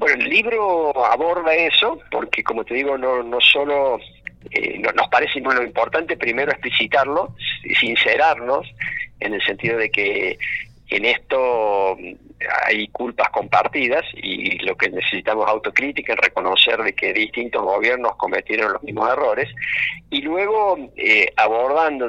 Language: Spanish